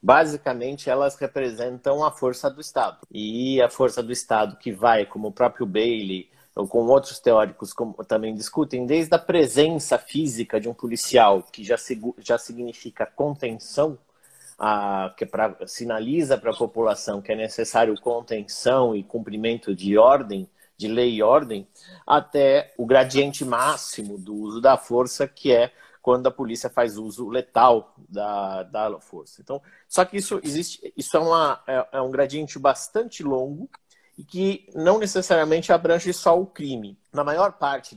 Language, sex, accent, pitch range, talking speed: Portuguese, male, Brazilian, 115-160 Hz, 150 wpm